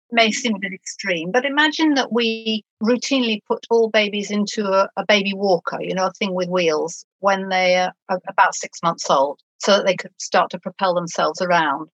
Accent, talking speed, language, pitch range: British, 200 wpm, English, 185-255 Hz